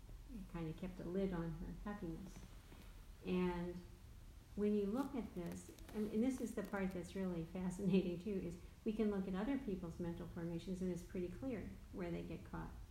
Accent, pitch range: American, 175-205 Hz